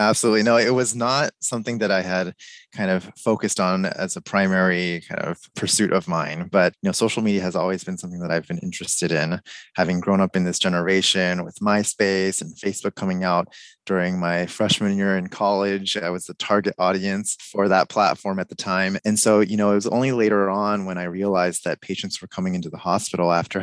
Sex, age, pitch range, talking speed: male, 20-39, 90-110 Hz, 215 wpm